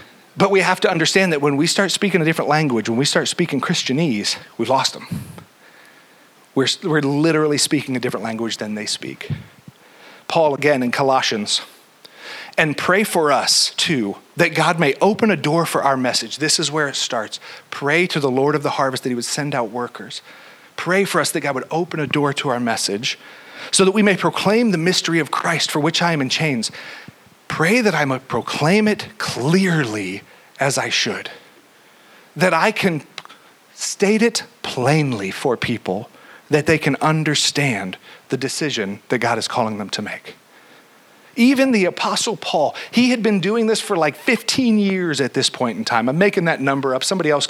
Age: 40-59